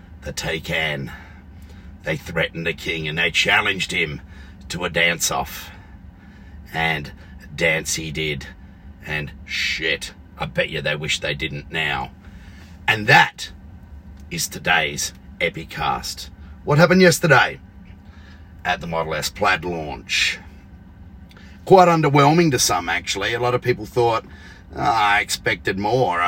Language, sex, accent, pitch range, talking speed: English, male, Australian, 85-130 Hz, 125 wpm